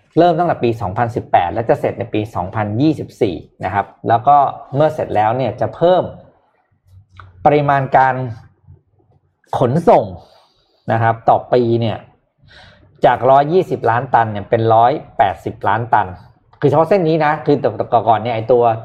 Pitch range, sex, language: 110-150 Hz, male, Thai